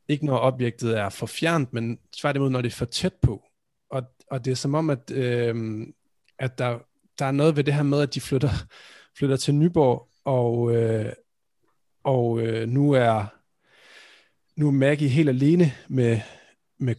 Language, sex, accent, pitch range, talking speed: Danish, male, native, 120-140 Hz, 180 wpm